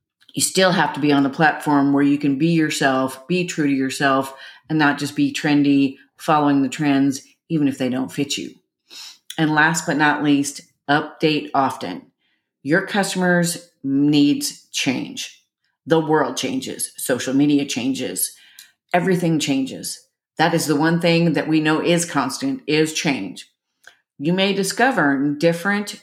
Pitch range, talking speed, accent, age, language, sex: 145-180 Hz, 150 wpm, American, 40-59, English, female